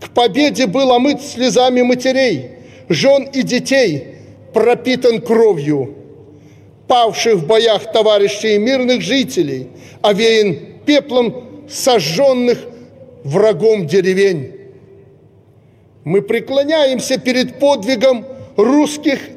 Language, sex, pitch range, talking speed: Russian, male, 210-265 Hz, 85 wpm